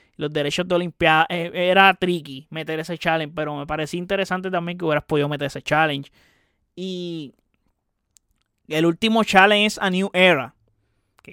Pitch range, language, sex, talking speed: 155-210 Hz, Spanish, male, 155 wpm